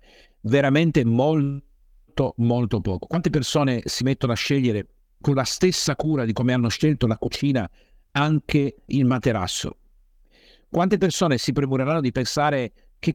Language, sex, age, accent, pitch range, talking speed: Italian, male, 50-69, native, 110-155 Hz, 135 wpm